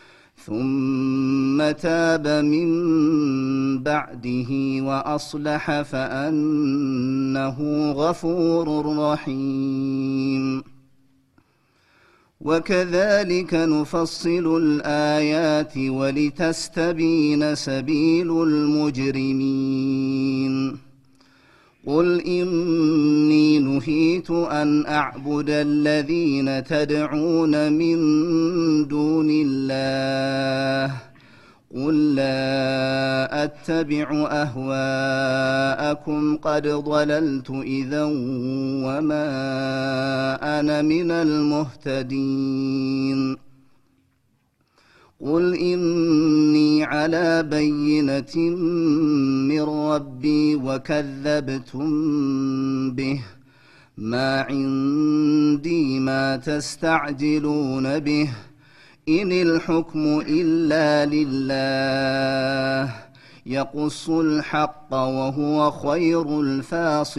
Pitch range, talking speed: 135-150 Hz, 50 wpm